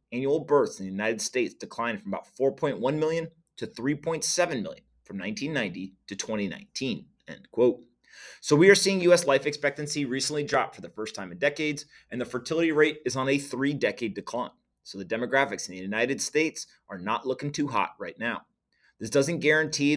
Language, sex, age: English, male, 30-49